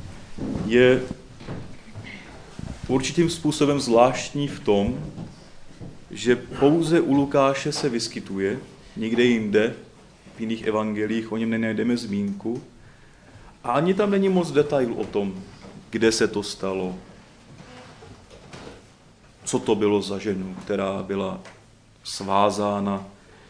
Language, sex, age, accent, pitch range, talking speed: Czech, male, 30-49, native, 105-140 Hz, 105 wpm